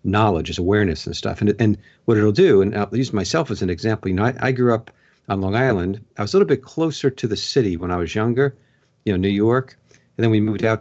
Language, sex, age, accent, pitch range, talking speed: English, male, 50-69, American, 95-120 Hz, 265 wpm